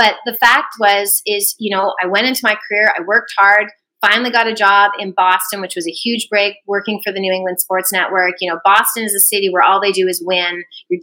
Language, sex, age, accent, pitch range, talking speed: English, female, 30-49, American, 185-225 Hz, 250 wpm